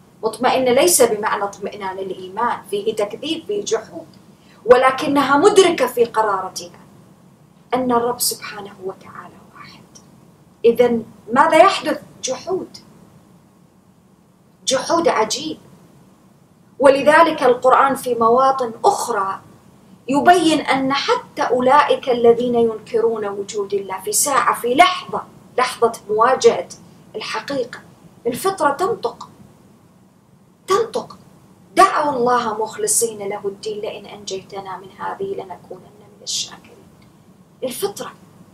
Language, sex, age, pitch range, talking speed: English, female, 30-49, 200-295 Hz, 95 wpm